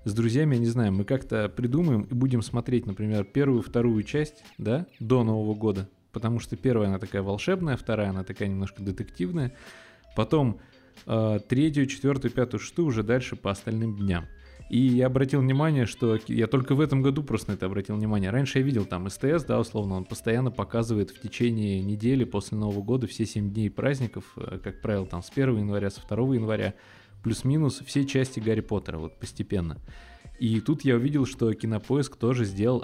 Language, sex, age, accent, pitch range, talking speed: Russian, male, 20-39, native, 105-130 Hz, 185 wpm